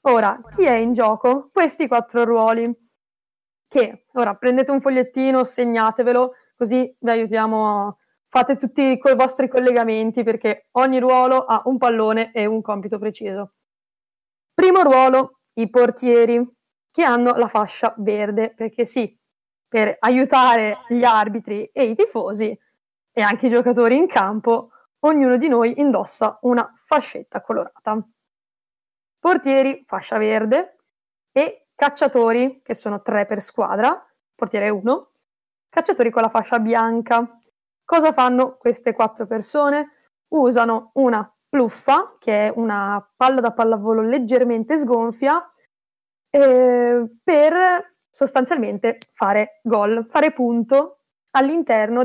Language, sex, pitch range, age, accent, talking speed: Italian, female, 225-260 Hz, 20-39, native, 120 wpm